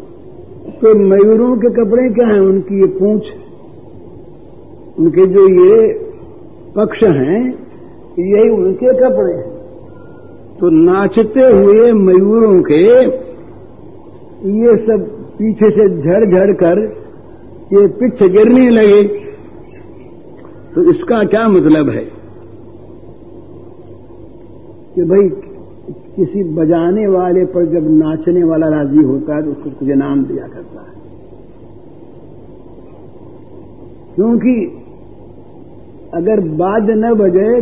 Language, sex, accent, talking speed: Hindi, male, native, 100 wpm